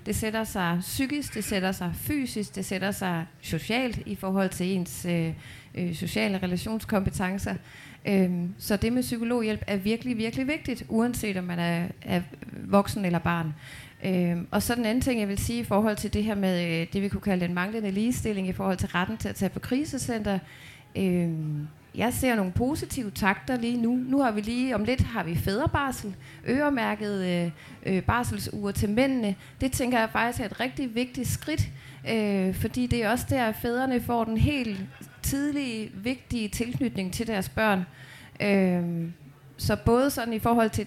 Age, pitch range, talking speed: 30-49, 180-235 Hz, 170 wpm